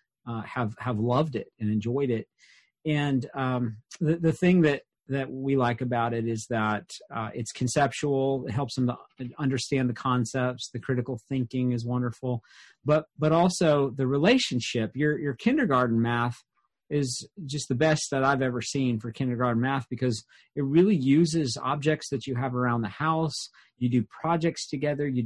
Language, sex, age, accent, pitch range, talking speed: English, male, 40-59, American, 120-155 Hz, 175 wpm